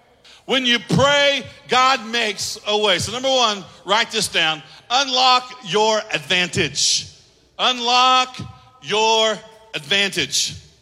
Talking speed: 105 wpm